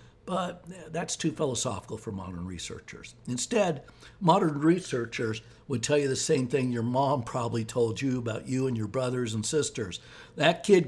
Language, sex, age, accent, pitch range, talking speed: English, male, 60-79, American, 115-170 Hz, 165 wpm